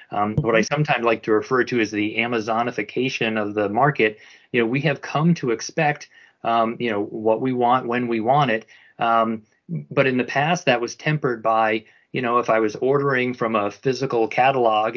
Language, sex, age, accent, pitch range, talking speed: English, male, 30-49, American, 110-135 Hz, 200 wpm